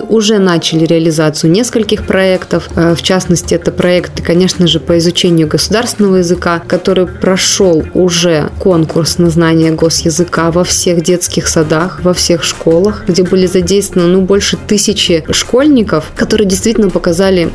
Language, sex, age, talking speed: Russian, female, 20-39, 135 wpm